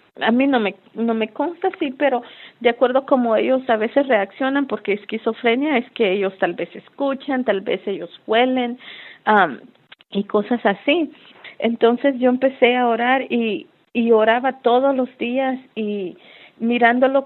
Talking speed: 155 wpm